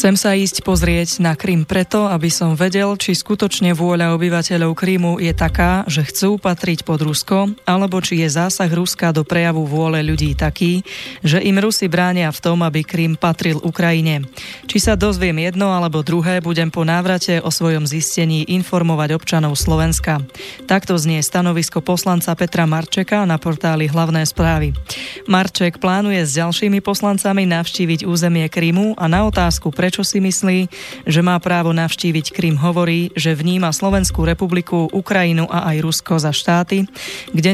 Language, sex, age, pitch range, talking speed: Slovak, female, 20-39, 160-185 Hz, 155 wpm